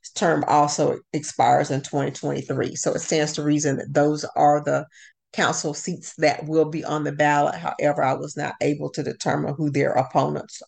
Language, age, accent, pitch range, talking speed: English, 50-69, American, 150-170 Hz, 180 wpm